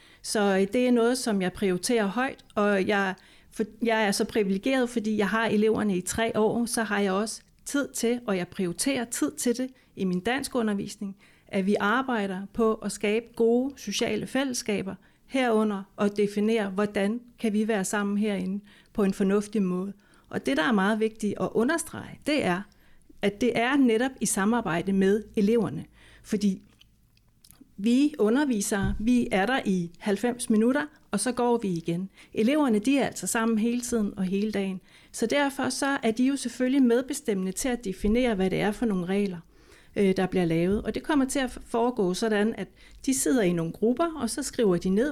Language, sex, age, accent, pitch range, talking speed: Danish, female, 30-49, native, 195-245 Hz, 185 wpm